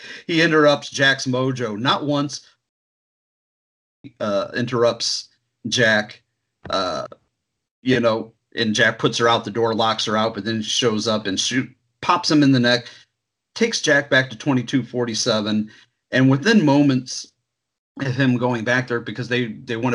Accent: American